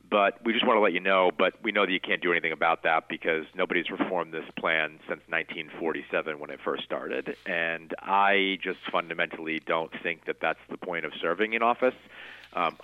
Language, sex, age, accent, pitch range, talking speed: English, male, 40-59, American, 90-110 Hz, 205 wpm